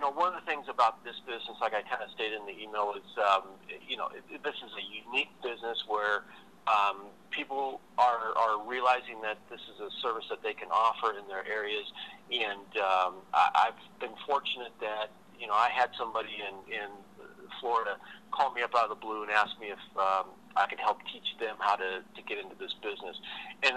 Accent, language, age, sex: American, English, 40-59, male